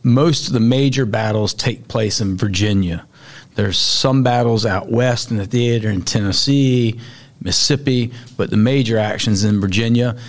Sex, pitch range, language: male, 110-135 Hz, English